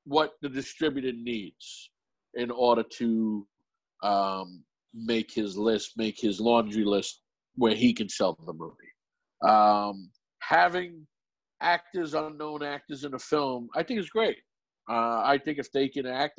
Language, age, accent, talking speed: English, 50-69, American, 145 wpm